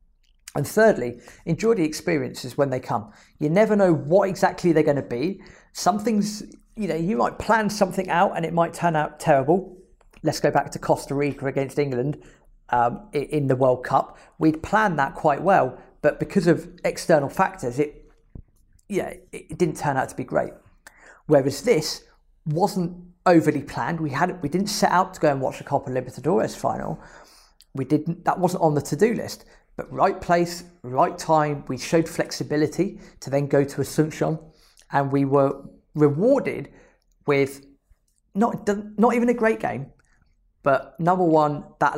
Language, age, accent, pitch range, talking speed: English, 40-59, British, 135-175 Hz, 170 wpm